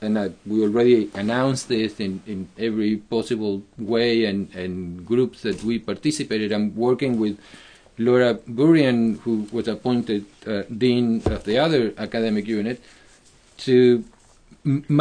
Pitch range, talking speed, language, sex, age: 115-150 Hz, 135 wpm, English, male, 40-59